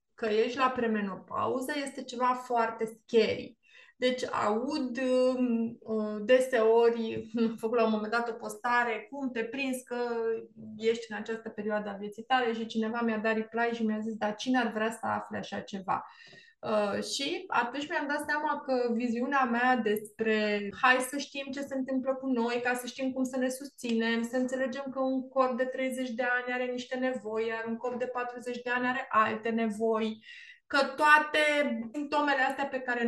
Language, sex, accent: Romanian, female, native